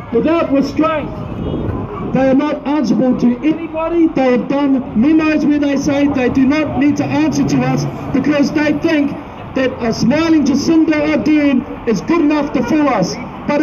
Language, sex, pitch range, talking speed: English, male, 260-300 Hz, 165 wpm